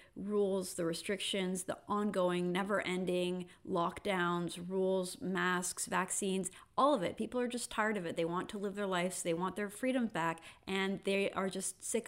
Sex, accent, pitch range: female, American, 170-195 Hz